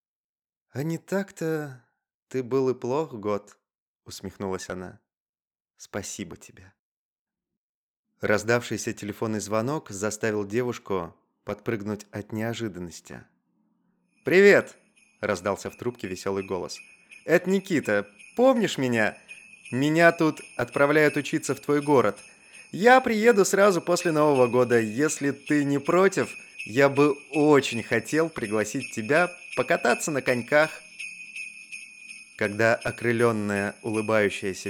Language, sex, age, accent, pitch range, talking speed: Russian, male, 30-49, native, 105-155 Hz, 100 wpm